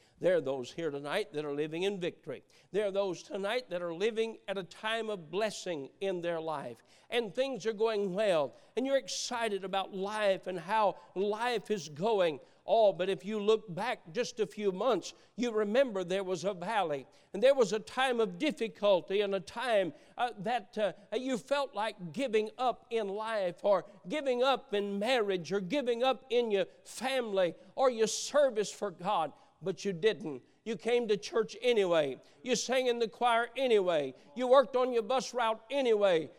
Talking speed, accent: 185 wpm, American